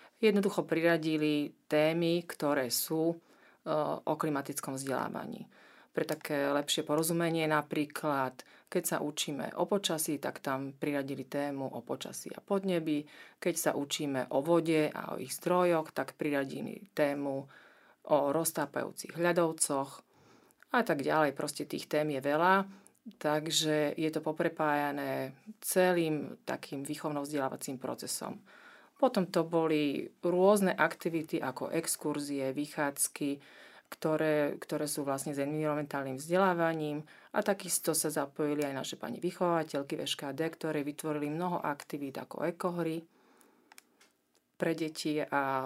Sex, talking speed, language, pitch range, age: female, 120 wpm, Slovak, 145-170 Hz, 40-59